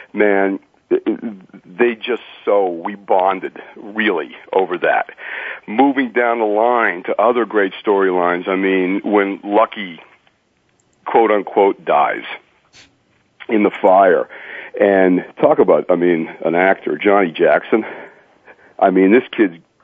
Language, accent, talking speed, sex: English, American, 120 wpm, male